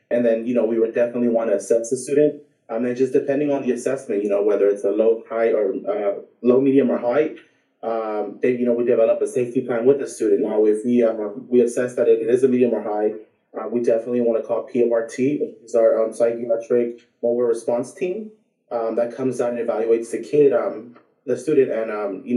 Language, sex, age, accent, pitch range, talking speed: English, male, 20-39, American, 115-140 Hz, 235 wpm